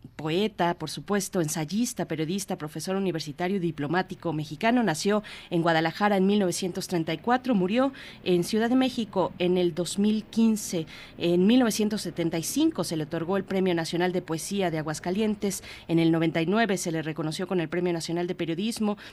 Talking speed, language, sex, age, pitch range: 145 wpm, Spanish, female, 30-49, 165-200 Hz